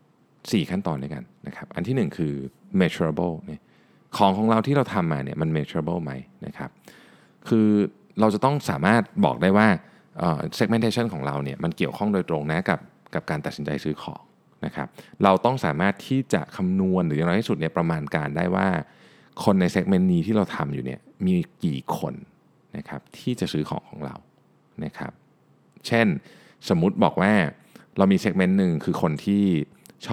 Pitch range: 75-110 Hz